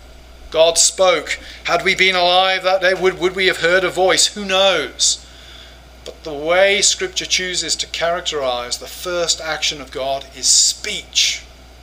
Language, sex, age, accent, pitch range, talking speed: English, male, 30-49, British, 155-195 Hz, 155 wpm